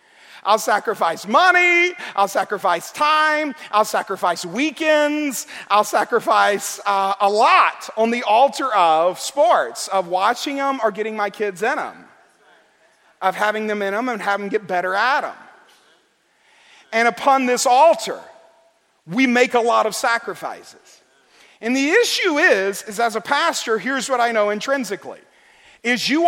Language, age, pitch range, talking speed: English, 40-59, 225-300 Hz, 150 wpm